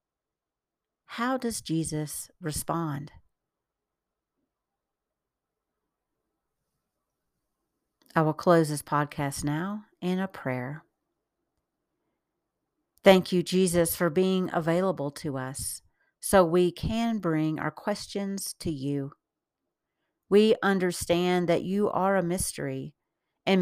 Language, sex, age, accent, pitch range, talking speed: English, female, 50-69, American, 150-190 Hz, 95 wpm